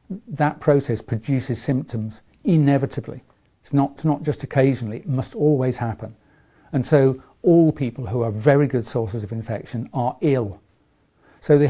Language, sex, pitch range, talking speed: English, male, 115-145 Hz, 155 wpm